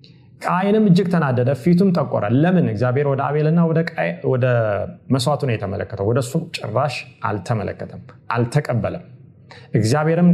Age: 30-49